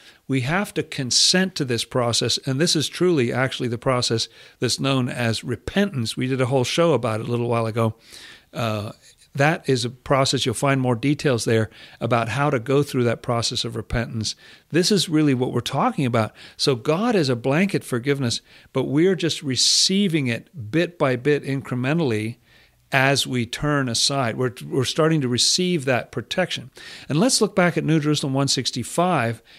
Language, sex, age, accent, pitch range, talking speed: English, male, 50-69, American, 120-155 Hz, 180 wpm